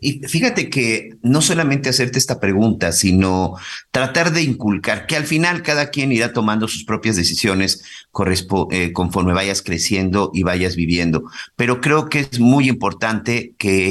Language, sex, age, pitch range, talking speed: Spanish, male, 50-69, 95-125 Hz, 155 wpm